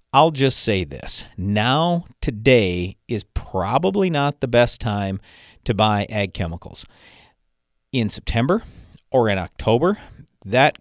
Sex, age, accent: male, 40-59, American